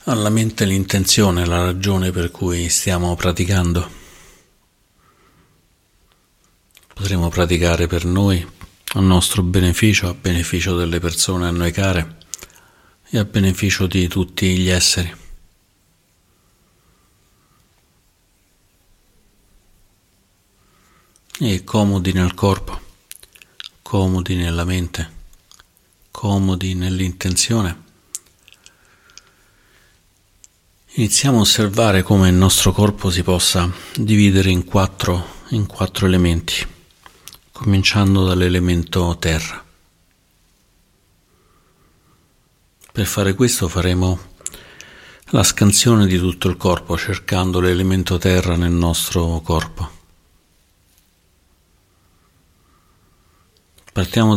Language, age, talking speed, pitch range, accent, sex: Italian, 50-69, 80 wpm, 85-95 Hz, native, male